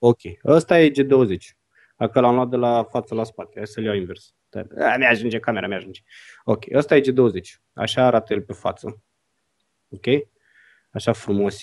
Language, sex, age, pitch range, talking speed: Romanian, male, 20-39, 105-130 Hz, 170 wpm